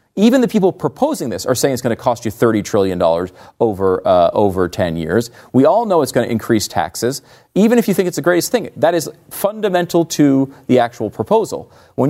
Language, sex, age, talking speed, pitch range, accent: English, male, 40-59, 215 wpm, 115-180 Hz, American